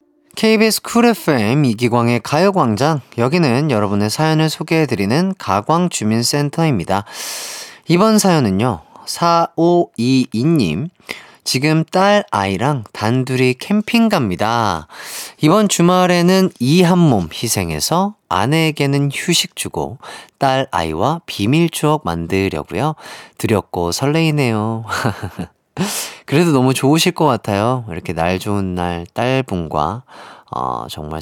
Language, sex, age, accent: Korean, male, 30-49, native